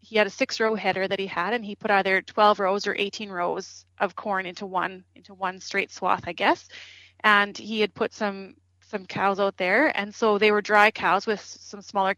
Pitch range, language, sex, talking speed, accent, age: 185-210 Hz, English, female, 225 wpm, American, 30-49